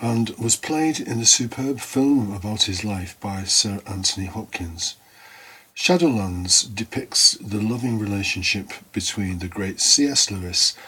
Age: 50-69